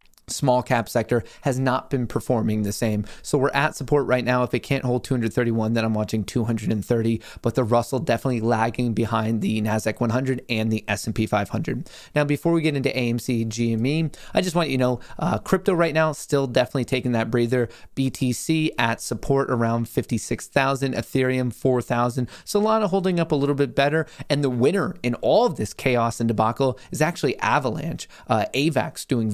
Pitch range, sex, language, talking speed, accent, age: 115-140 Hz, male, English, 180 wpm, American, 30-49